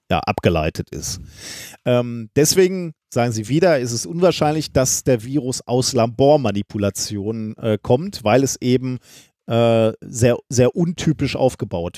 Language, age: German, 40-59